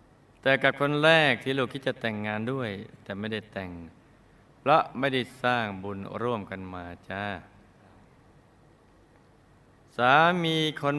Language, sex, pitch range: Thai, male, 105-140 Hz